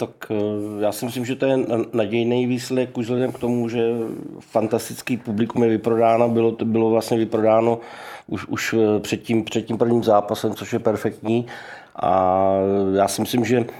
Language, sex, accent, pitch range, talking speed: Czech, male, native, 110-115 Hz, 160 wpm